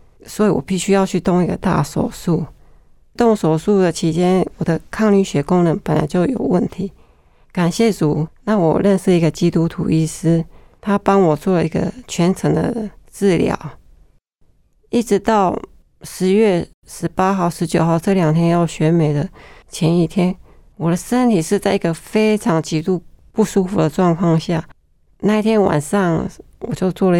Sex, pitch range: female, 165-195 Hz